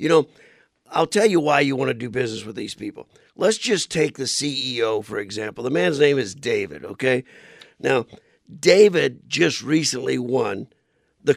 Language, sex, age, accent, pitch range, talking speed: English, male, 50-69, American, 135-170 Hz, 175 wpm